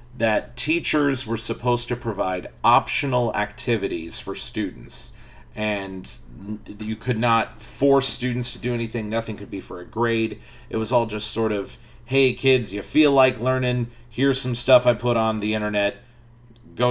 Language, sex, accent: English, male, American